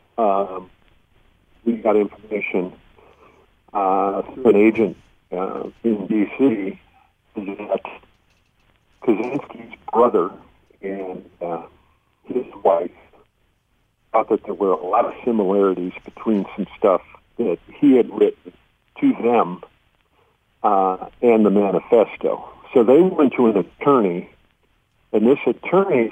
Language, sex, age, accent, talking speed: English, male, 50-69, American, 110 wpm